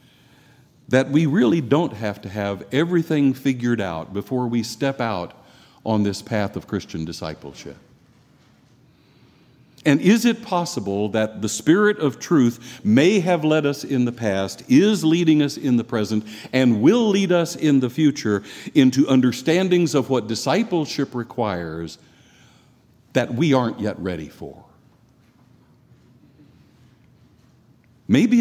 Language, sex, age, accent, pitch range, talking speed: English, male, 60-79, American, 105-140 Hz, 130 wpm